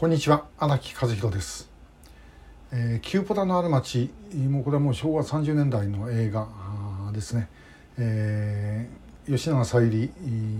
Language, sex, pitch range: Japanese, male, 105-140 Hz